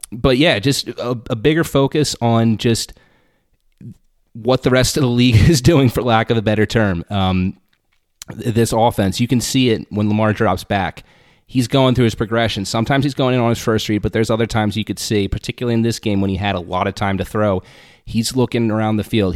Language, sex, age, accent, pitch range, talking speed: English, male, 30-49, American, 100-120 Hz, 225 wpm